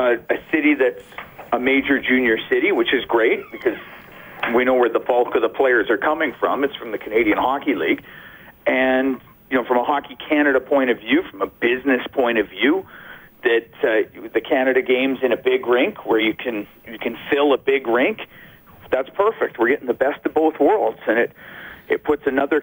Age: 40-59